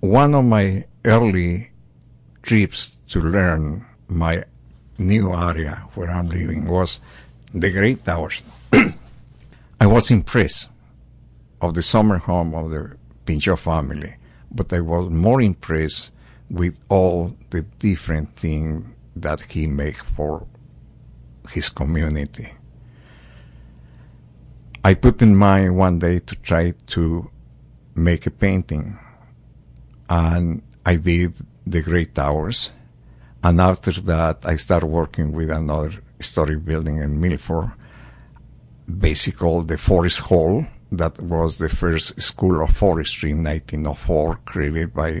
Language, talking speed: English, 120 wpm